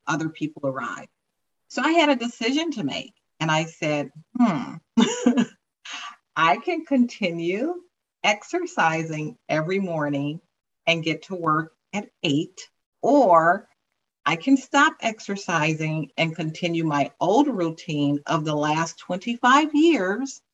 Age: 40-59